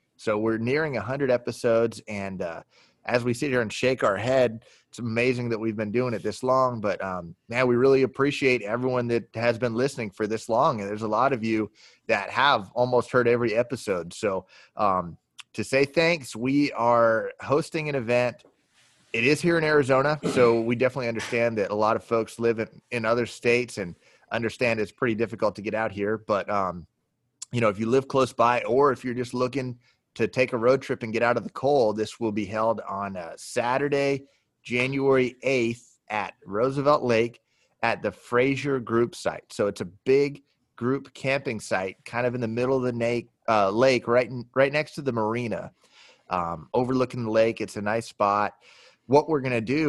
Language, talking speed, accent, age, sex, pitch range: English, 195 wpm, American, 30-49, male, 110-130 Hz